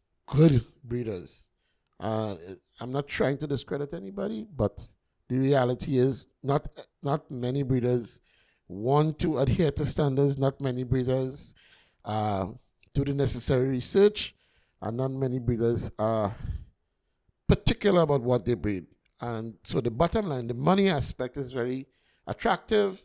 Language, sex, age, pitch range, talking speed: English, male, 50-69, 125-165 Hz, 135 wpm